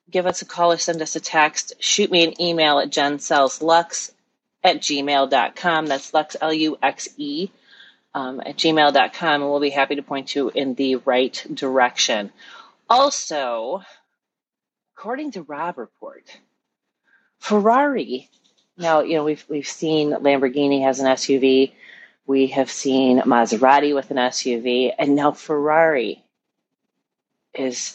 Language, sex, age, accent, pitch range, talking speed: English, female, 30-49, American, 125-165 Hz, 130 wpm